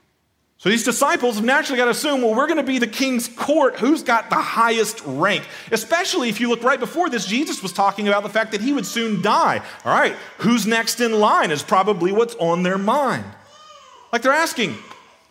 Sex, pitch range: male, 145-240 Hz